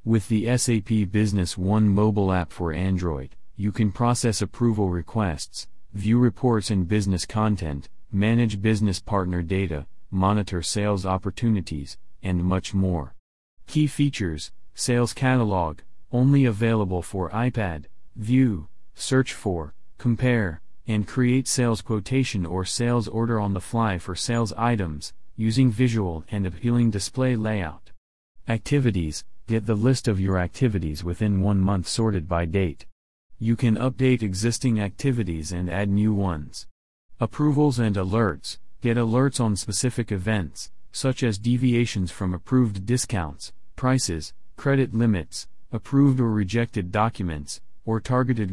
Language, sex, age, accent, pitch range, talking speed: English, male, 40-59, American, 95-120 Hz, 130 wpm